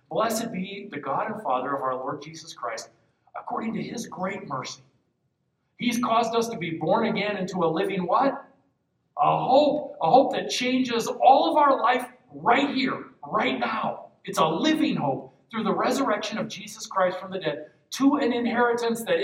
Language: English